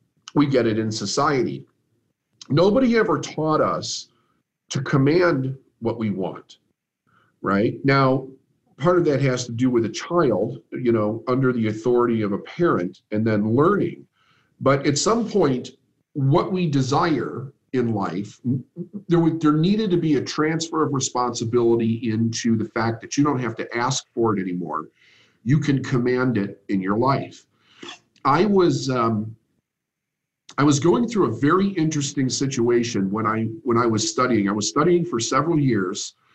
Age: 50-69